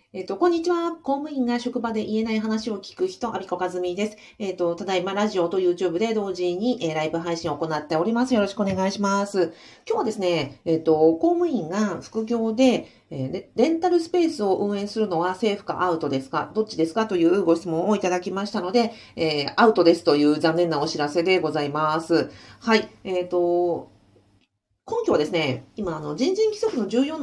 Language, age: Japanese, 40-59